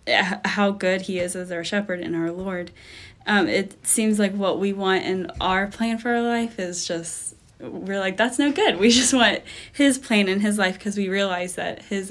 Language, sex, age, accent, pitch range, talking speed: English, female, 20-39, American, 180-205 Hz, 215 wpm